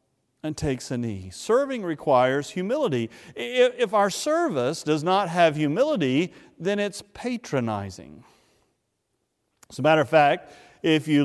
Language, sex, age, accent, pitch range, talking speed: English, male, 50-69, American, 120-165 Hz, 130 wpm